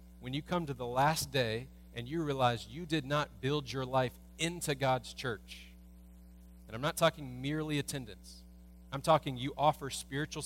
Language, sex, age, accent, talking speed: English, male, 30-49, American, 170 wpm